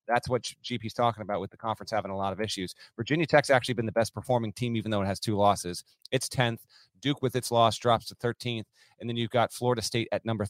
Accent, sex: American, male